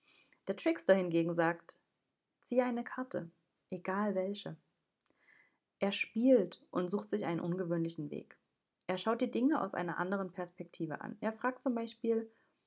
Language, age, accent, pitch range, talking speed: German, 30-49, German, 170-210 Hz, 140 wpm